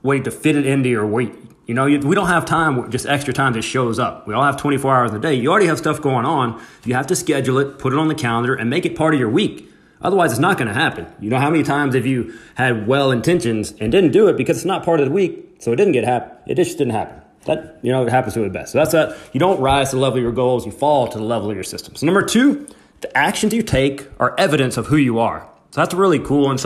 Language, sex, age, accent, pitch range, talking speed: English, male, 30-49, American, 120-160 Hz, 295 wpm